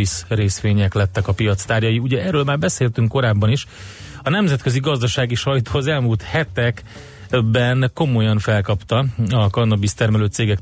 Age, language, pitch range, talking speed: 30-49, Hungarian, 105-125 Hz, 125 wpm